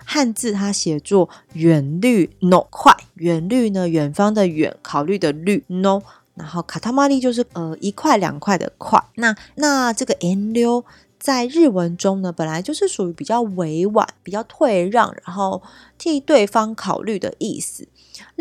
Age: 20-39